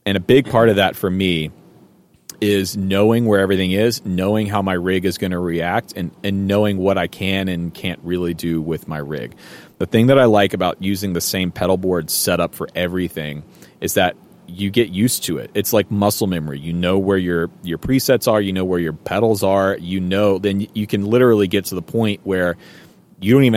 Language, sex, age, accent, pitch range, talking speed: English, male, 30-49, American, 90-115 Hz, 220 wpm